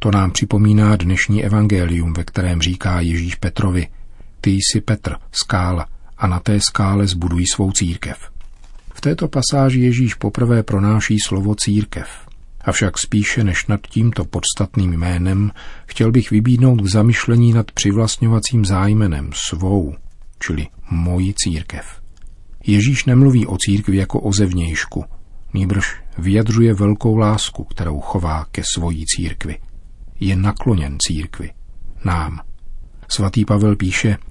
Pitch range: 90-105 Hz